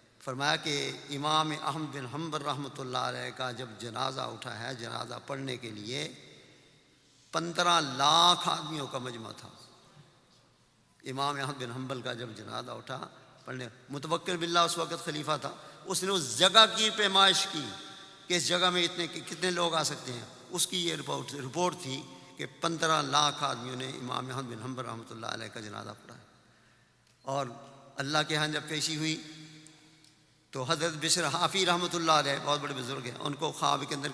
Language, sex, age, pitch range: English, male, 50-69, 125-170 Hz